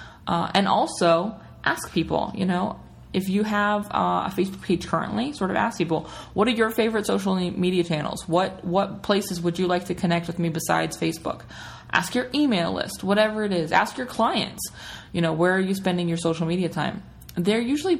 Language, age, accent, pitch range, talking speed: English, 20-39, American, 165-205 Hz, 200 wpm